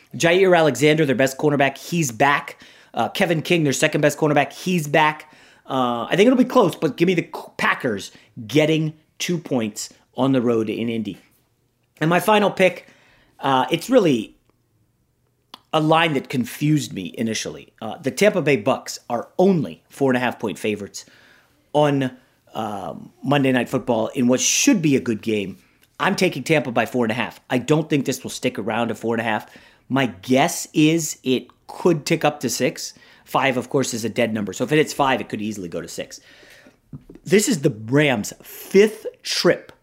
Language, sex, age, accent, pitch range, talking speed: English, male, 30-49, American, 125-165 Hz, 175 wpm